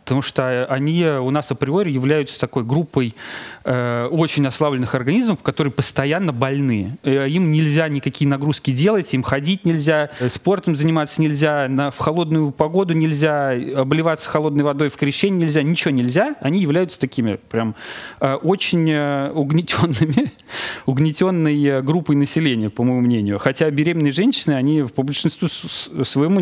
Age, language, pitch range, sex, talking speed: 30-49, Russian, 130-160 Hz, male, 135 wpm